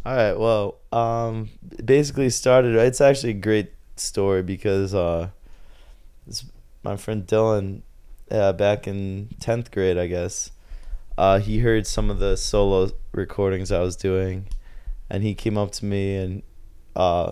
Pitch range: 95-110 Hz